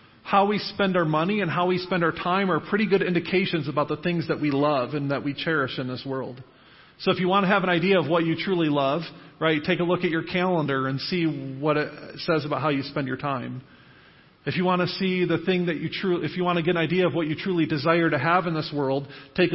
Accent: American